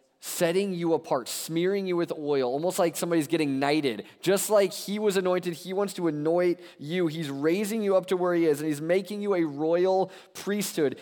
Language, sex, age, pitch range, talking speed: English, male, 20-39, 105-175 Hz, 200 wpm